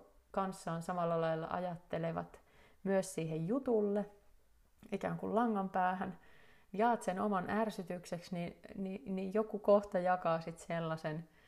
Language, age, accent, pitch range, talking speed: Finnish, 30-49, native, 165-205 Hz, 110 wpm